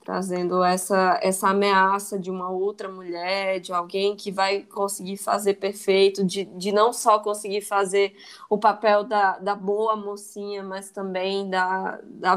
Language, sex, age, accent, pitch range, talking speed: Portuguese, female, 20-39, Brazilian, 190-215 Hz, 150 wpm